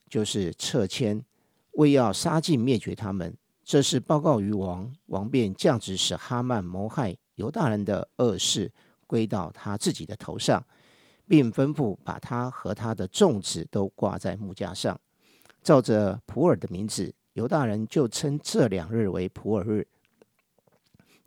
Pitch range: 100-135 Hz